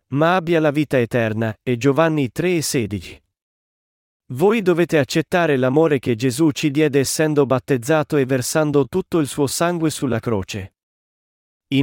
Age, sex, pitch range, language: 40-59, male, 120-160 Hz, Italian